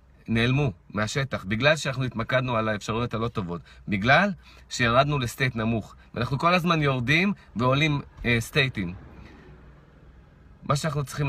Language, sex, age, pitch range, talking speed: Hebrew, male, 30-49, 95-125 Hz, 120 wpm